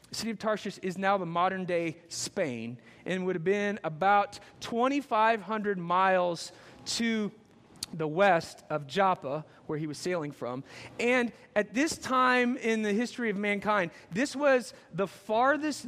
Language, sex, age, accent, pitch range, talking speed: English, male, 30-49, American, 175-225 Hz, 155 wpm